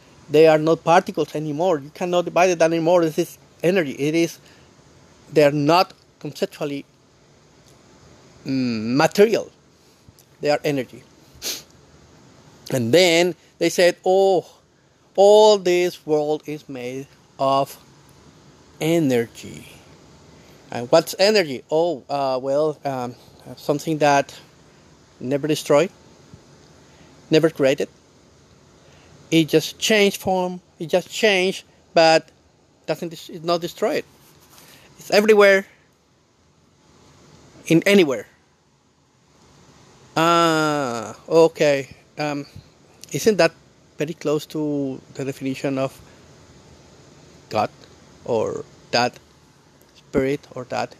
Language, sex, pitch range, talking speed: English, male, 140-170 Hz, 95 wpm